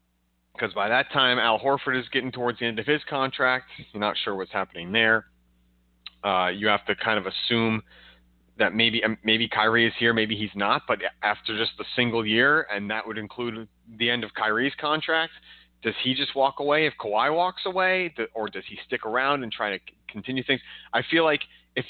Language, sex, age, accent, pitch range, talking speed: English, male, 30-49, American, 100-125 Hz, 205 wpm